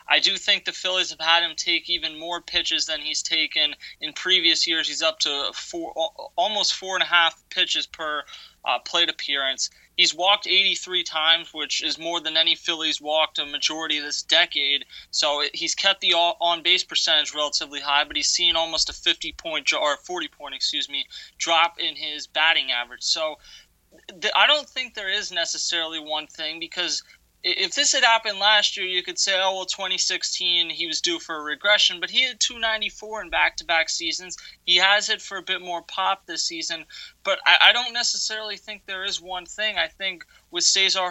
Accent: American